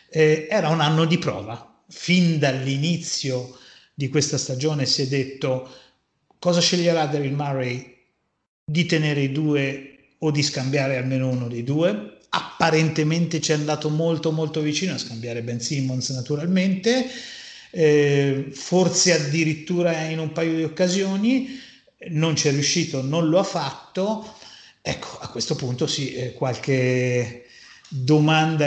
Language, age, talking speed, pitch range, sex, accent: Italian, 30-49, 130 wpm, 135-165 Hz, male, native